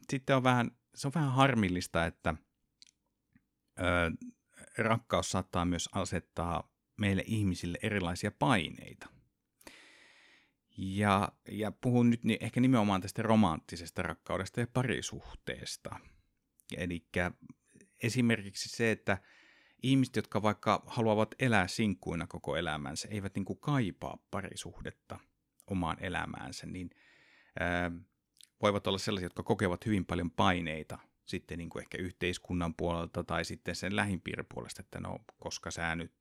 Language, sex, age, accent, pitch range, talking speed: Finnish, male, 60-79, native, 85-110 Hz, 110 wpm